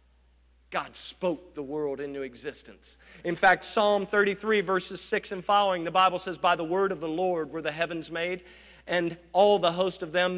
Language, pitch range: English, 165-200 Hz